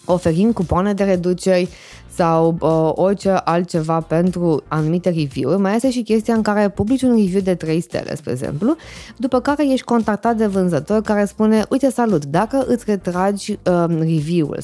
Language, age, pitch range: Romanian, 20-39, 170-220 Hz